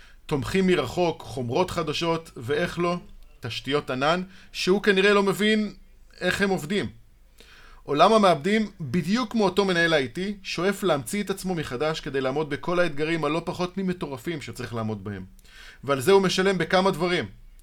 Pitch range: 145-195 Hz